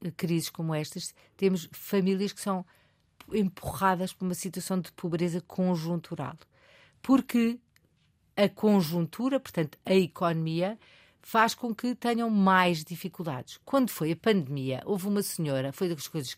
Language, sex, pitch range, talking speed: Portuguese, female, 160-200 Hz, 135 wpm